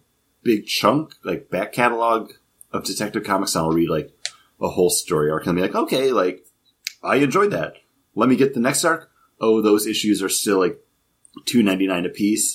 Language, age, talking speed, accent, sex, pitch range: English, 30-49, 200 wpm, American, male, 80-110 Hz